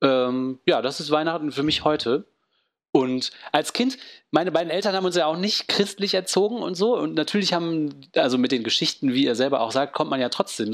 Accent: German